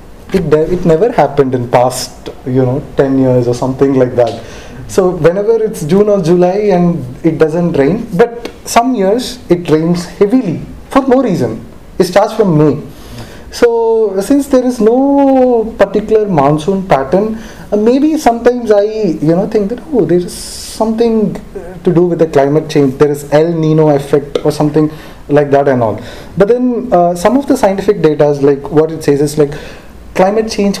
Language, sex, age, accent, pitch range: Korean, male, 20-39, Indian, 135-195 Hz